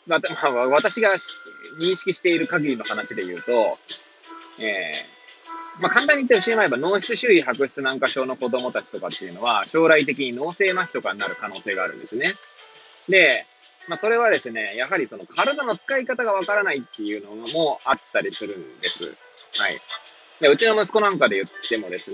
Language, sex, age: Japanese, male, 20-39